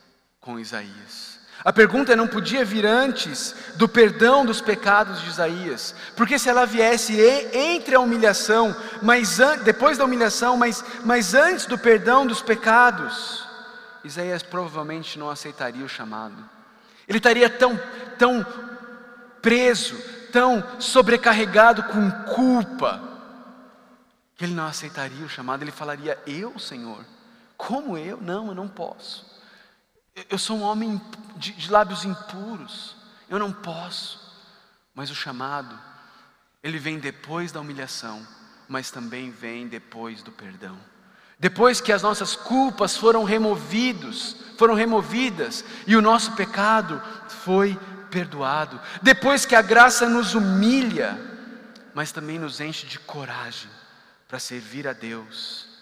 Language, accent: Portuguese, Brazilian